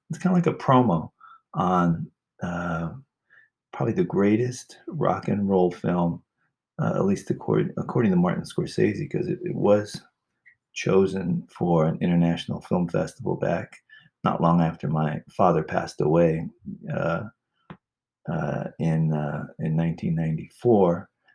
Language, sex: English, male